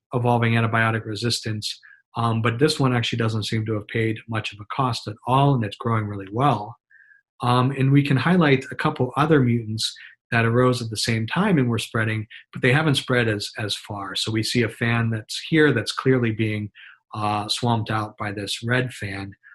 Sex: male